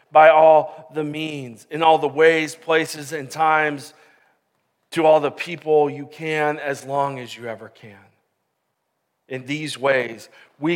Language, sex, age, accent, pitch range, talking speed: English, male, 40-59, American, 135-160 Hz, 150 wpm